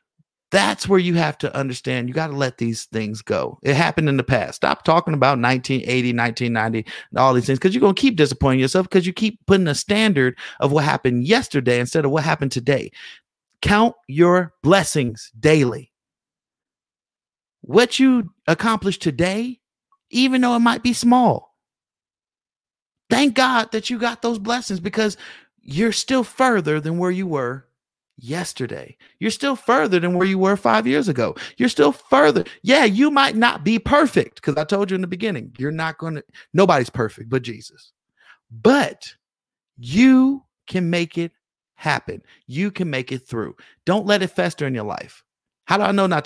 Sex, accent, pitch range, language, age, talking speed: male, American, 130-205 Hz, English, 50-69, 175 wpm